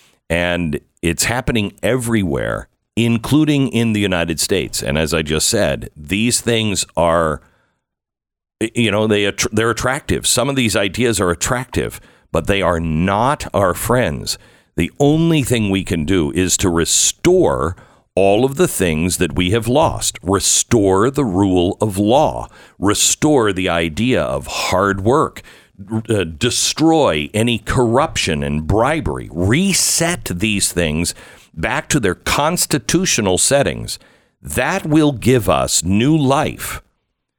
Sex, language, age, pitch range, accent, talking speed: male, English, 50-69, 90-125 Hz, American, 130 wpm